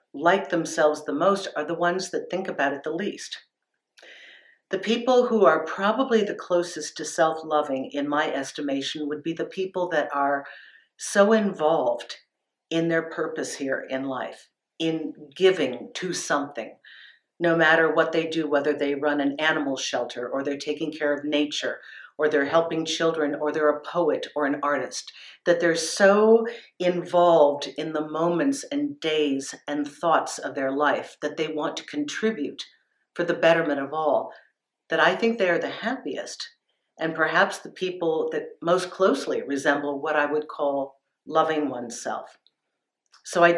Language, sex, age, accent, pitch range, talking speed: English, female, 50-69, American, 150-180 Hz, 160 wpm